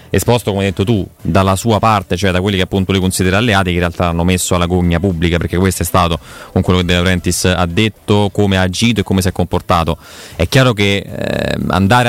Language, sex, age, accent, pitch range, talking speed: Italian, male, 20-39, native, 95-110 Hz, 240 wpm